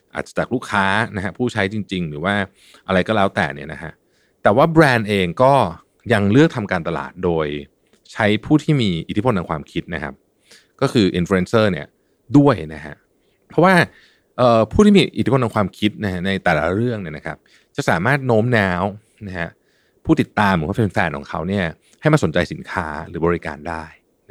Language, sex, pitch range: Thai, male, 85-125 Hz